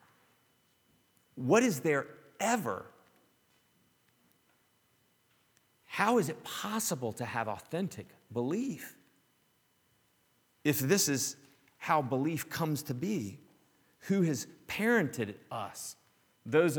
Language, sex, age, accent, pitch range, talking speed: English, male, 40-59, American, 115-160 Hz, 90 wpm